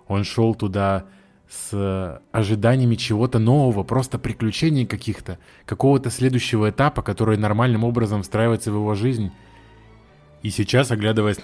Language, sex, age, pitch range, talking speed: Russian, male, 20-39, 95-115 Hz, 120 wpm